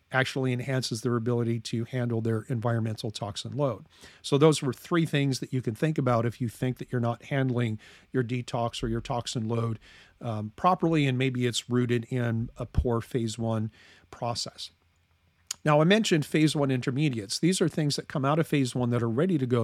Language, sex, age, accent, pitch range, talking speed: English, male, 40-59, American, 115-150 Hz, 200 wpm